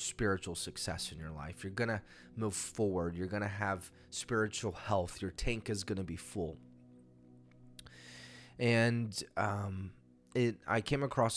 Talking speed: 155 wpm